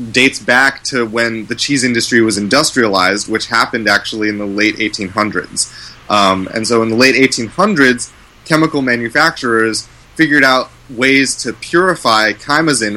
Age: 30-49